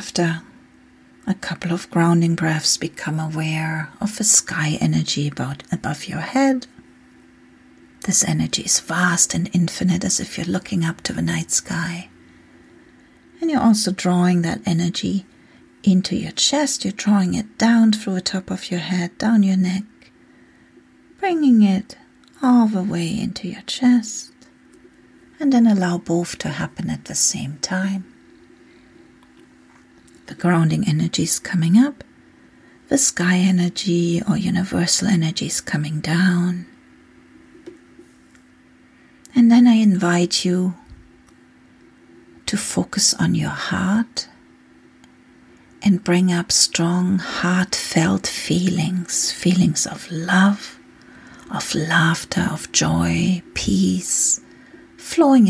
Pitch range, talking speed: 160-205 Hz, 120 wpm